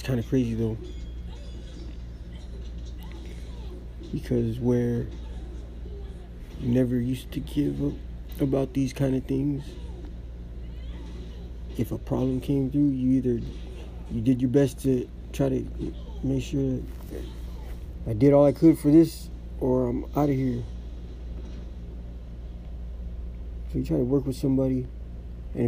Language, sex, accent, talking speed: English, male, American, 125 wpm